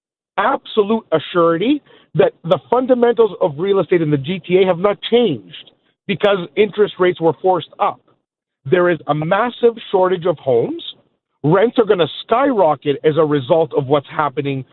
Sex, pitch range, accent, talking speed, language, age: male, 155-215 Hz, American, 155 wpm, English, 50-69